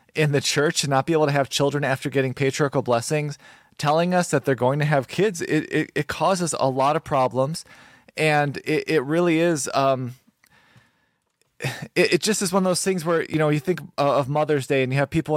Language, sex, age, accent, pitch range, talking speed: English, male, 20-39, American, 135-155 Hz, 220 wpm